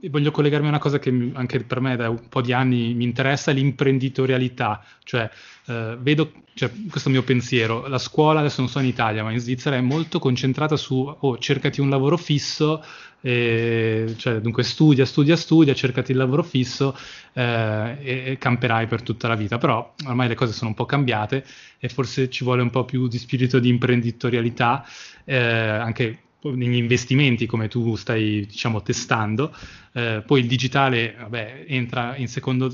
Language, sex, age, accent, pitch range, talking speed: Italian, male, 20-39, native, 120-135 Hz, 180 wpm